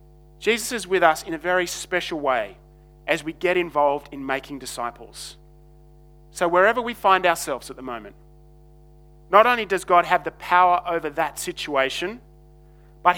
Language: English